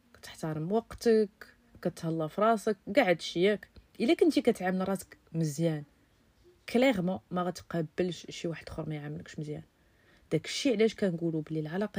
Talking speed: 140 wpm